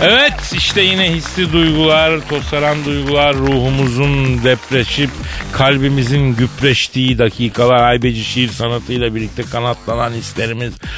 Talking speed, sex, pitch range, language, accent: 100 wpm, male, 110-145 Hz, Turkish, native